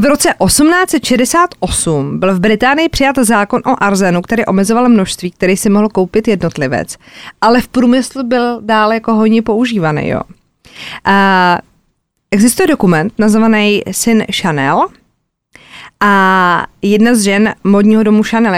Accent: native